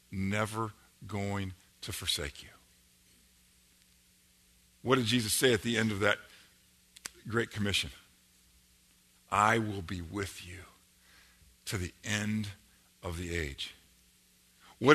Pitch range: 90-150 Hz